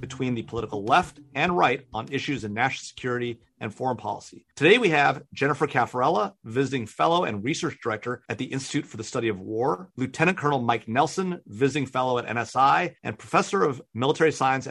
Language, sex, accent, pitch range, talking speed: English, male, American, 120-155 Hz, 185 wpm